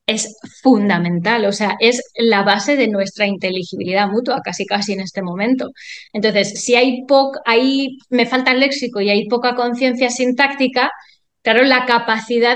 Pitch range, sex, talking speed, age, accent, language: 210-265 Hz, female, 160 wpm, 20-39, Spanish, Spanish